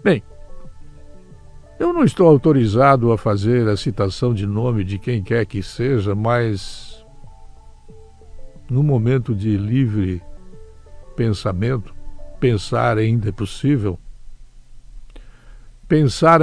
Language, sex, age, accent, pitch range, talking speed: Portuguese, male, 60-79, Brazilian, 110-145 Hz, 100 wpm